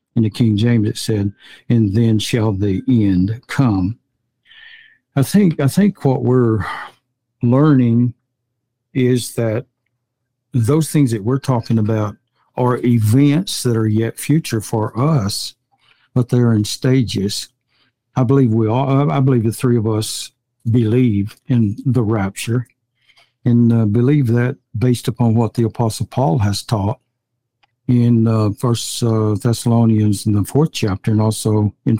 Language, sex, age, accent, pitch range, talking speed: English, male, 60-79, American, 110-125 Hz, 145 wpm